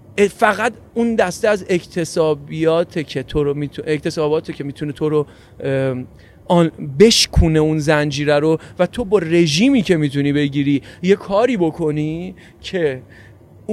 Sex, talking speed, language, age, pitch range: male, 130 wpm, Persian, 40-59, 140-185 Hz